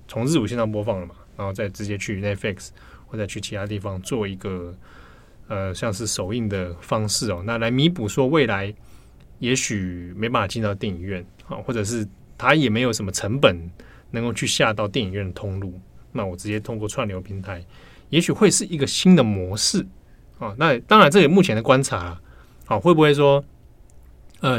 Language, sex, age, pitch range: Chinese, male, 20-39, 95-130 Hz